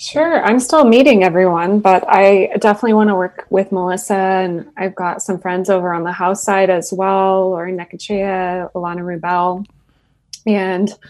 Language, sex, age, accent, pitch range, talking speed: English, female, 20-39, American, 175-200 Hz, 160 wpm